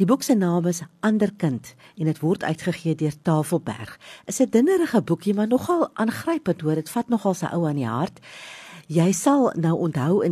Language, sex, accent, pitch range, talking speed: English, female, Austrian, 150-190 Hz, 190 wpm